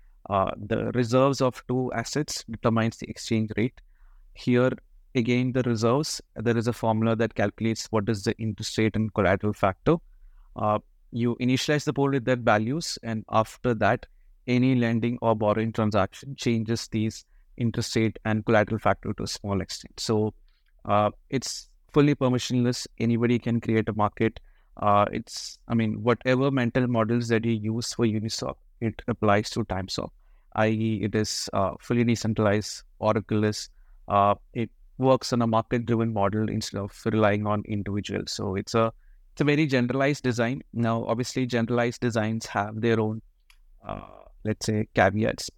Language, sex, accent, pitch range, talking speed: English, male, Indian, 105-120 Hz, 155 wpm